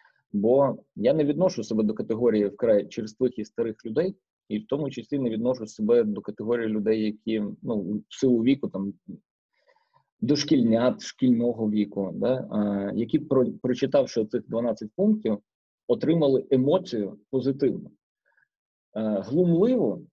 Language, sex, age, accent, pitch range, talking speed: Ukrainian, male, 20-39, native, 115-145 Hz, 135 wpm